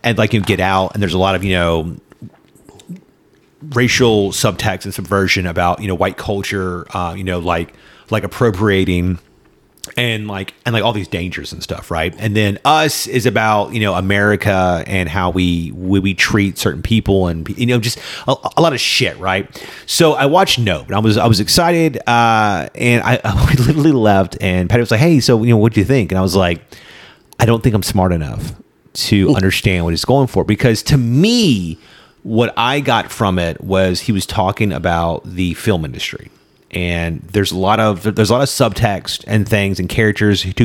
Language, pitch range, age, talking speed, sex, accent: English, 90-115 Hz, 30-49, 205 wpm, male, American